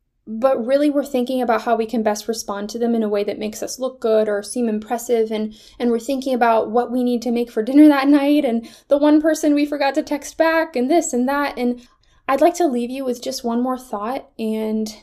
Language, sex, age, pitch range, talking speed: English, female, 10-29, 220-260 Hz, 250 wpm